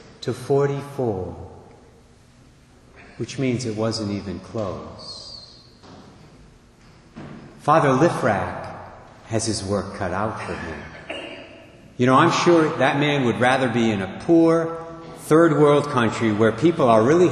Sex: male